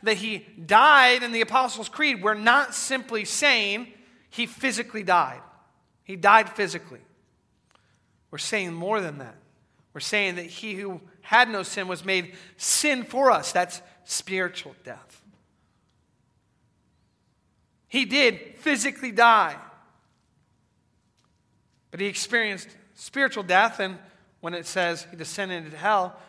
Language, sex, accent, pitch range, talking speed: English, male, American, 170-220 Hz, 125 wpm